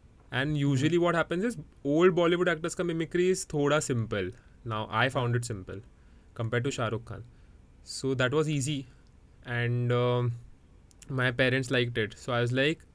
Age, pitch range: 20-39, 120-165 Hz